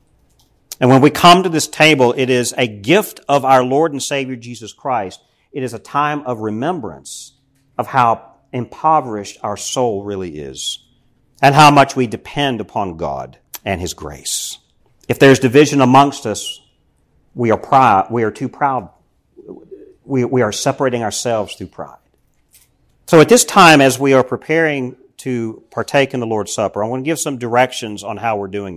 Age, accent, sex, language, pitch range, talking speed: 50-69, American, male, English, 105-135 Hz, 175 wpm